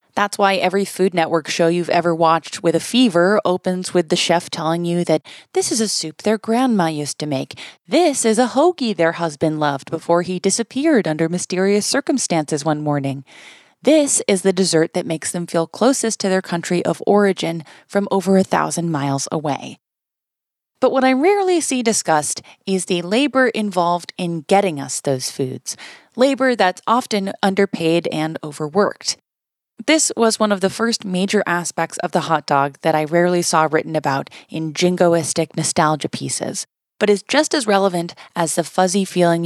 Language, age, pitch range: English, 20-39, 160-210 Hz